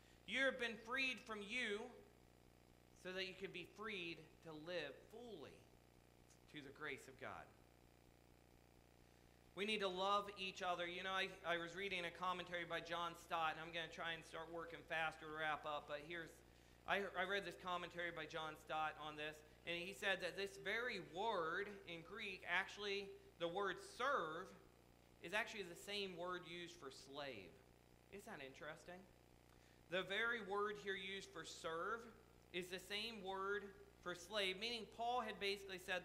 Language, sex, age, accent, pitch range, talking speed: English, male, 40-59, American, 155-205 Hz, 170 wpm